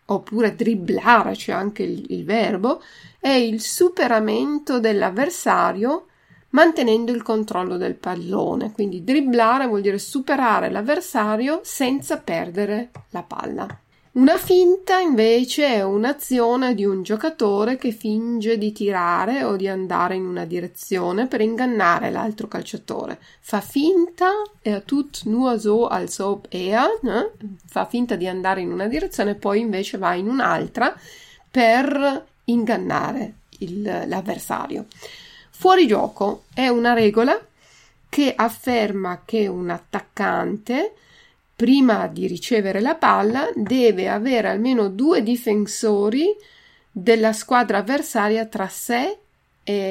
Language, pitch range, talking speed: Italian, 200-255 Hz, 115 wpm